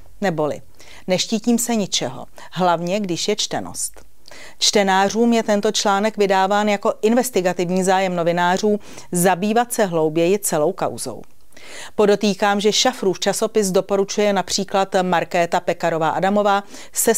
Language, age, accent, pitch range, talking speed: Czech, 40-59, native, 175-210 Hz, 110 wpm